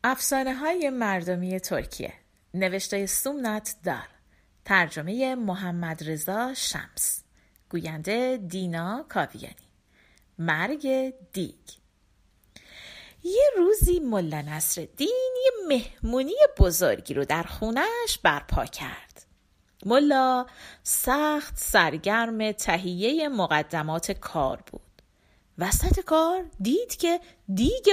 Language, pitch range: Persian, 185-290 Hz